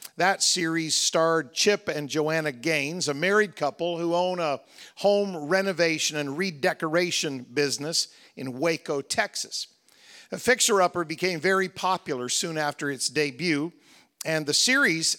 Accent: American